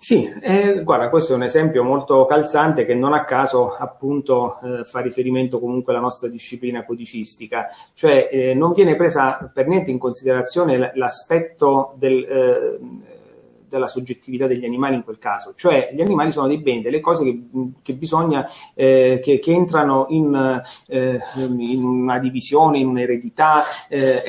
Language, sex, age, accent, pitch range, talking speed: Italian, male, 30-49, native, 125-155 Hz, 160 wpm